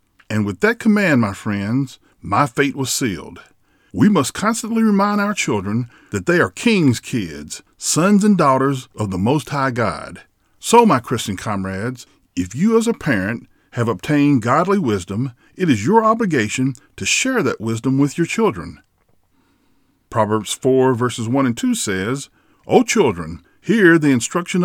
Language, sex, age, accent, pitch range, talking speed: English, male, 50-69, American, 110-165 Hz, 160 wpm